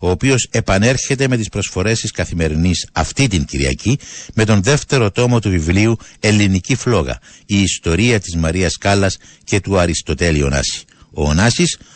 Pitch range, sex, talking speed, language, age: 85-125 Hz, male, 150 wpm, Greek, 60-79